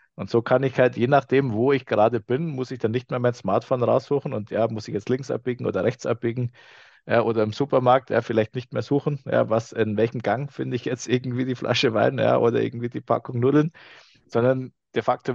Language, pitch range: German, 115-140 Hz